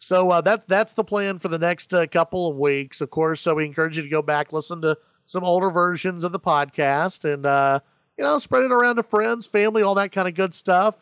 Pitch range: 155-195 Hz